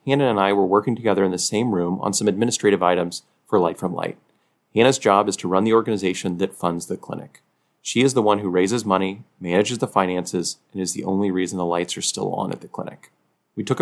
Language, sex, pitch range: English, male, 95-115 Hz